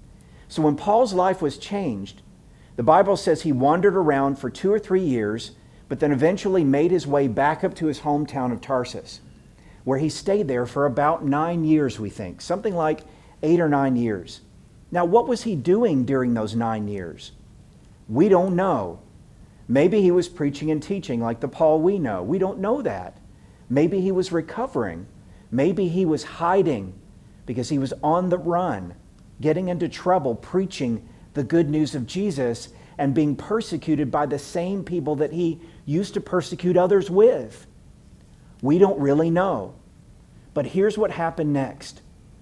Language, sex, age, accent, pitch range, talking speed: English, male, 50-69, American, 125-180 Hz, 170 wpm